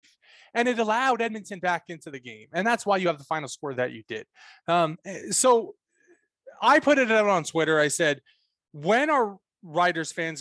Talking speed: 190 wpm